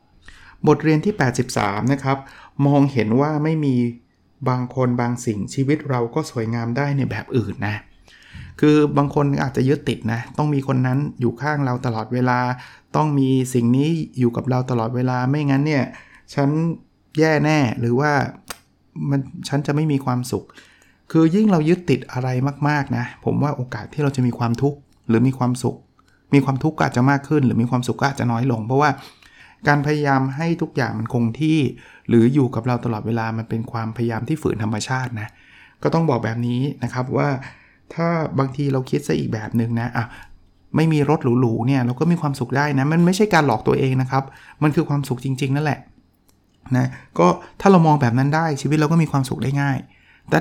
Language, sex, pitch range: Thai, male, 120-150 Hz